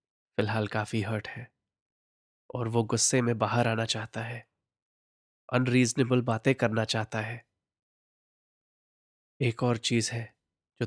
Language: Hindi